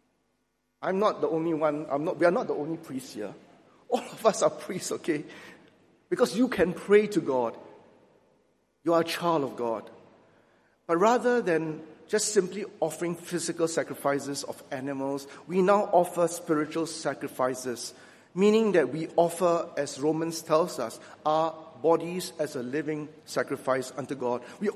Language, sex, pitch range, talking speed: English, male, 150-190 Hz, 155 wpm